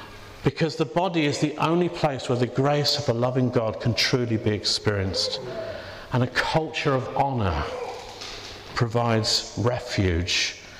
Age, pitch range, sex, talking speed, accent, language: 50-69, 105-145 Hz, male, 140 wpm, British, English